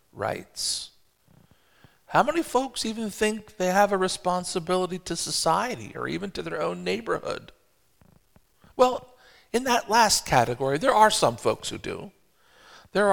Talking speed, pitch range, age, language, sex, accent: 135 wpm, 120-150 Hz, 50-69, English, male, American